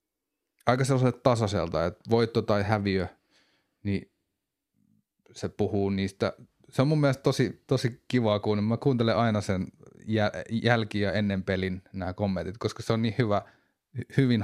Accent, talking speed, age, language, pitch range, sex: native, 150 wpm, 30-49, Finnish, 95-115 Hz, male